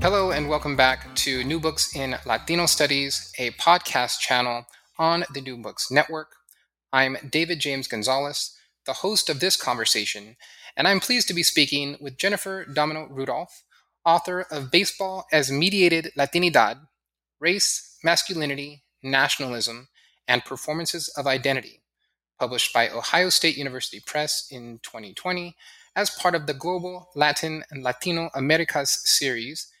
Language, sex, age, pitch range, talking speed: English, male, 20-39, 135-175 Hz, 135 wpm